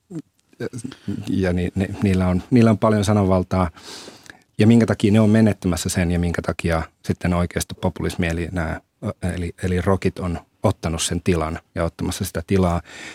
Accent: native